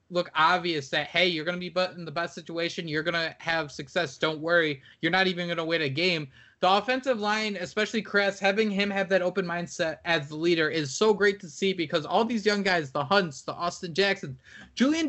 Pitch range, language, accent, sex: 155-195 Hz, English, American, male